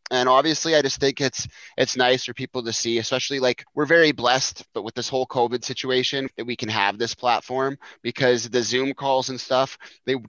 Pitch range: 110-125 Hz